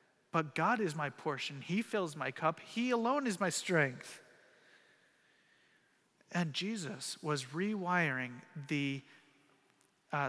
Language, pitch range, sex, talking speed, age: English, 140-180 Hz, male, 115 wpm, 40-59